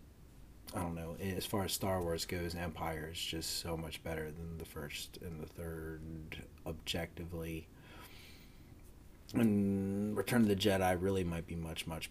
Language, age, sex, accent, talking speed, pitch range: English, 30-49, male, American, 160 wpm, 80-105 Hz